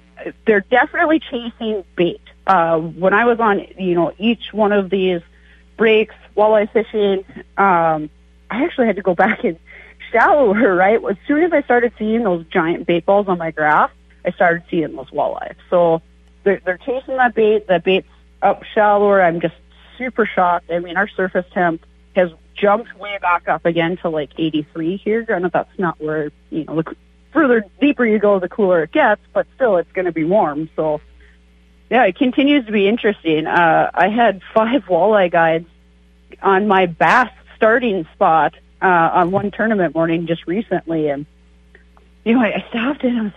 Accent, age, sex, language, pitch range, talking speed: American, 30-49, female, English, 165-220 Hz, 185 wpm